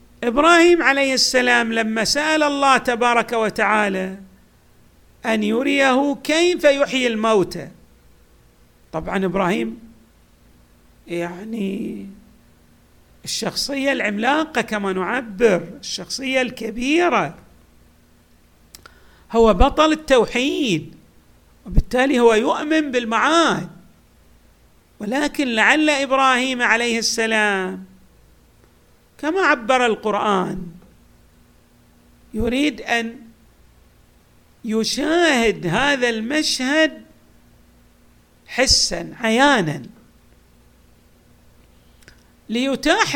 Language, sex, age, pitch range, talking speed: Arabic, male, 50-69, 190-275 Hz, 65 wpm